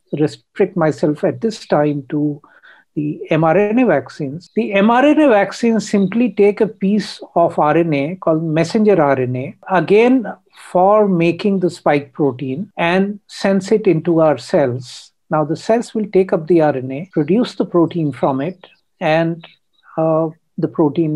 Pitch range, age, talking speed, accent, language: 155-195 Hz, 60-79, 140 wpm, Indian, English